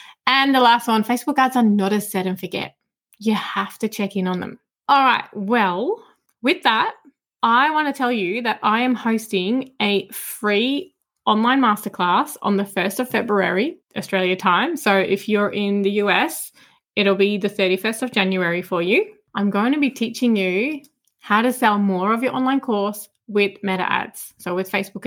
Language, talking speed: English, 185 wpm